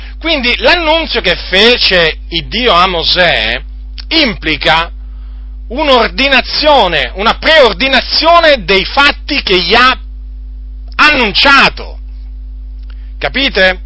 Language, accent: Italian, native